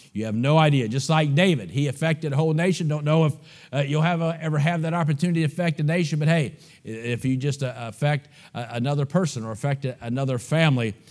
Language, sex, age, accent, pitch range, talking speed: English, male, 50-69, American, 135-175 Hz, 225 wpm